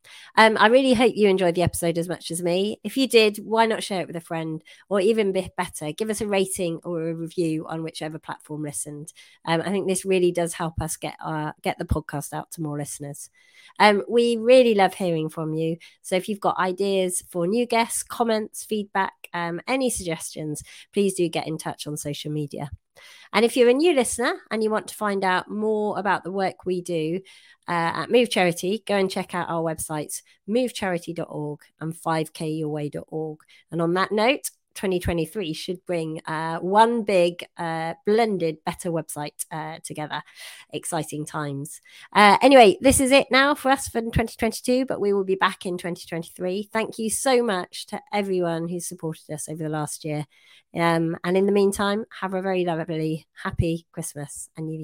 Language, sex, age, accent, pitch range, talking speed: English, female, 30-49, British, 155-205 Hz, 190 wpm